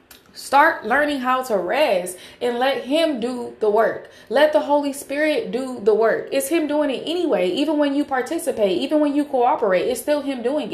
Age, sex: 20-39, female